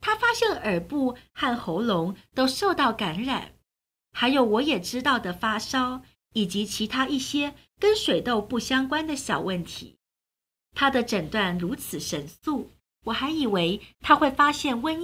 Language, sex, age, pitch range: Chinese, female, 50-69, 195-295 Hz